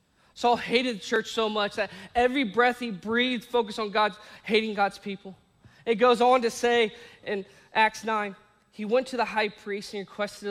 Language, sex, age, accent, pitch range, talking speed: English, male, 20-39, American, 190-230 Hz, 190 wpm